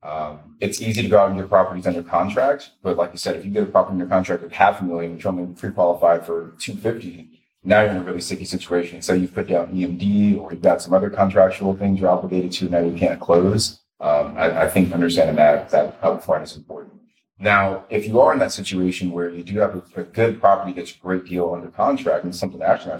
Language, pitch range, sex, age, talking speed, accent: English, 90-105 Hz, male, 30-49, 250 wpm, American